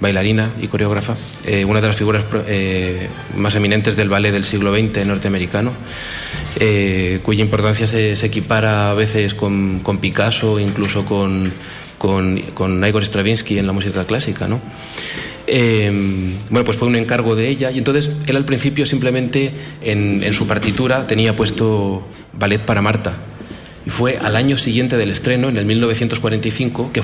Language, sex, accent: Spanish, male, Spanish